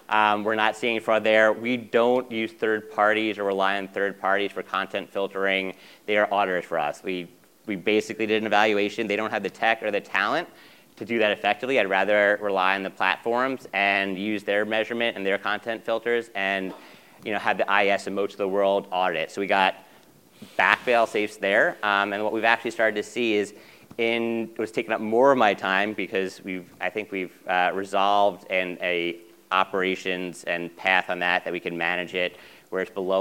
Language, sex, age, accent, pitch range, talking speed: English, male, 30-49, American, 95-110 Hz, 210 wpm